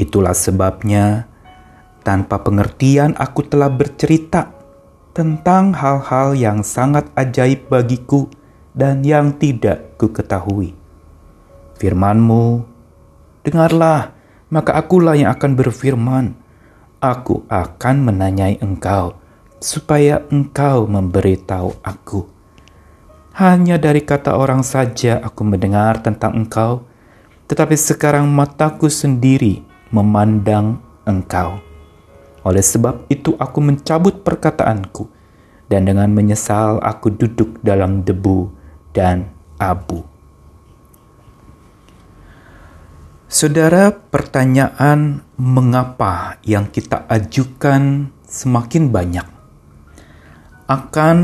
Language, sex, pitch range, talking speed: Indonesian, male, 95-135 Hz, 85 wpm